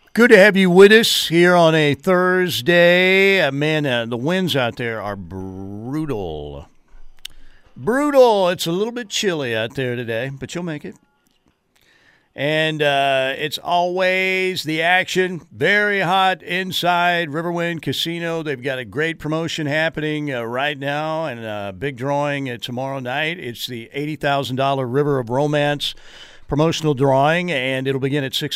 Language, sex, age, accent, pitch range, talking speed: English, male, 50-69, American, 125-170 Hz, 150 wpm